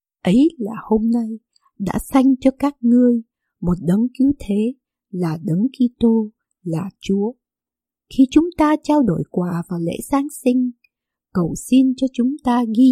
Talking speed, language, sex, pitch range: 160 wpm, Vietnamese, female, 195-260 Hz